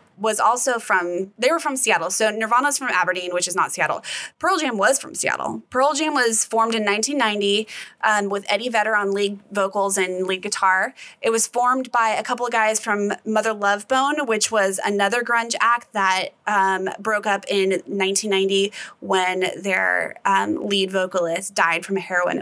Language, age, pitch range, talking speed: English, 20-39, 195-240 Hz, 180 wpm